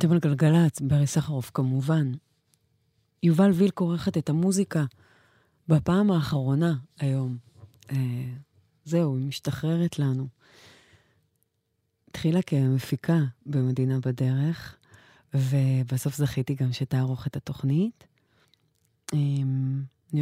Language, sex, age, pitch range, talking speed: English, female, 30-49, 130-155 Hz, 85 wpm